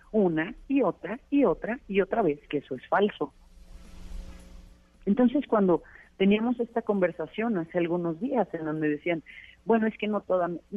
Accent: Mexican